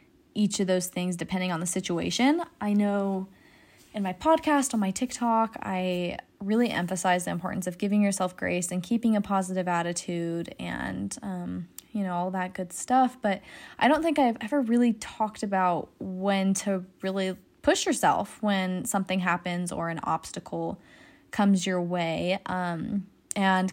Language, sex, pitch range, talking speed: English, female, 185-230 Hz, 160 wpm